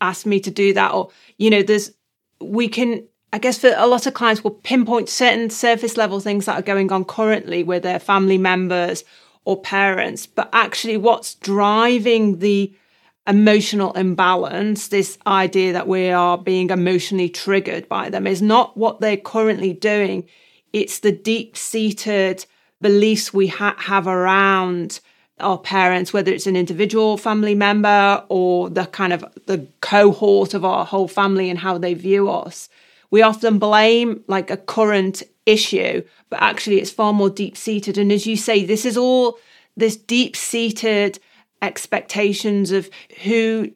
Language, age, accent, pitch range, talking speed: English, 30-49, British, 190-220 Hz, 160 wpm